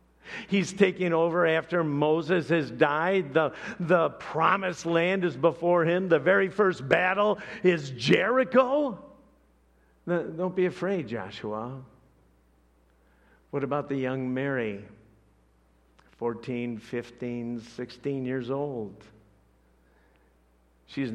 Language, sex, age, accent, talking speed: English, male, 50-69, American, 100 wpm